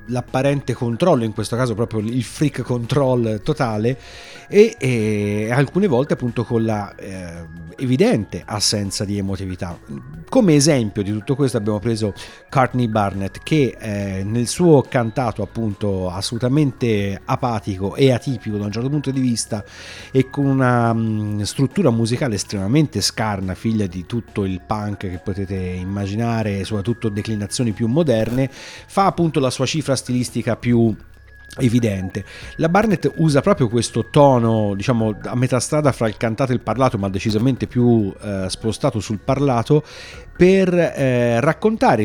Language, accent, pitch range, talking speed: Italian, native, 100-130 Hz, 140 wpm